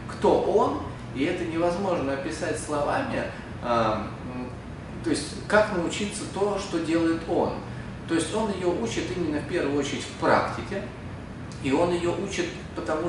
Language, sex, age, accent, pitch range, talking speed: Russian, male, 30-49, native, 110-150 Hz, 145 wpm